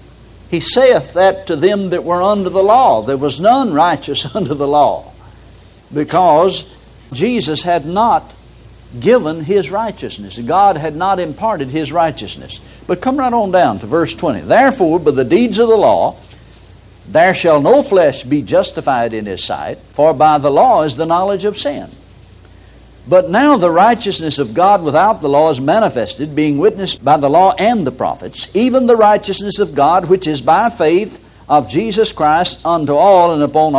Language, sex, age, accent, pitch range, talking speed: English, male, 60-79, American, 140-205 Hz, 175 wpm